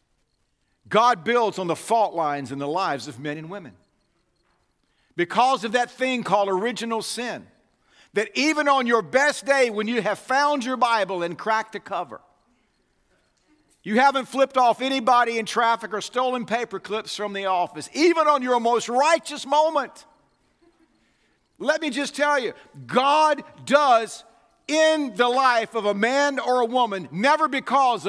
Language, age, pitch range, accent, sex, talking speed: English, 50-69, 210-290 Hz, American, male, 160 wpm